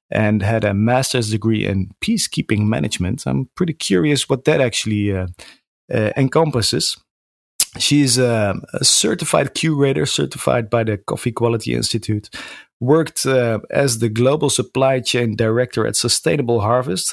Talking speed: 135 wpm